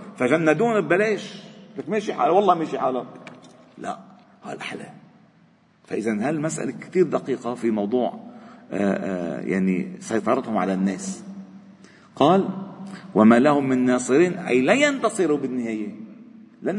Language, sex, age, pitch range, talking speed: Arabic, male, 50-69, 125-195 Hz, 115 wpm